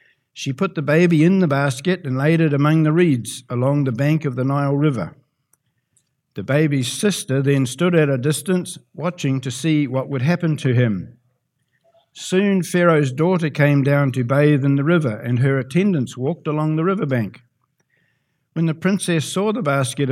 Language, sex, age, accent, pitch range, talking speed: English, male, 60-79, Australian, 130-170 Hz, 175 wpm